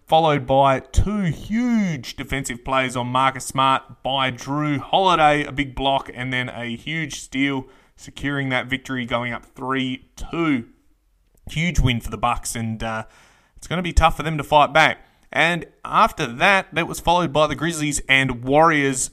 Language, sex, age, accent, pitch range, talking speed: English, male, 20-39, Australian, 125-150 Hz, 170 wpm